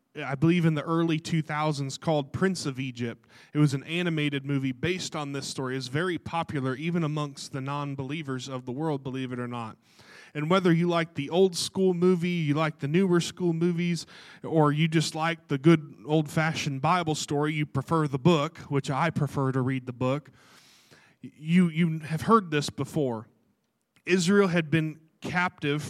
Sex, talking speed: male, 180 wpm